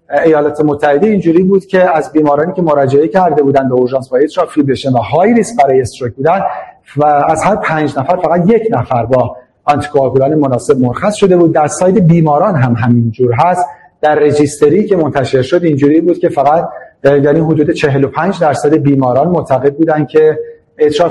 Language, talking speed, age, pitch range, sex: Persian, 170 wpm, 40-59, 140-175 Hz, male